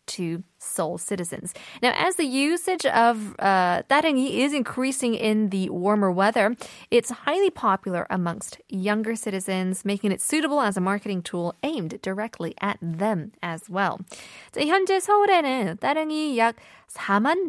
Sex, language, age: female, Korean, 20-39